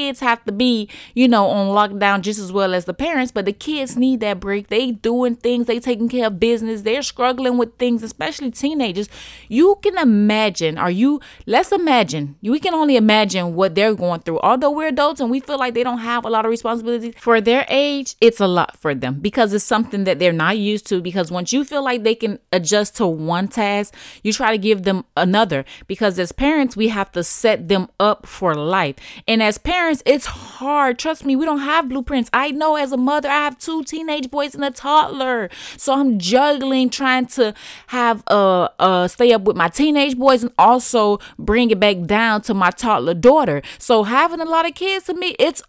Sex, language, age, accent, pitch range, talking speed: female, English, 20-39, American, 205-275 Hz, 215 wpm